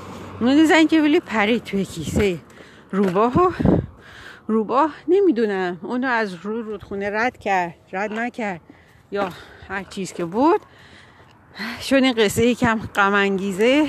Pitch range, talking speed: 200-260 Hz, 125 wpm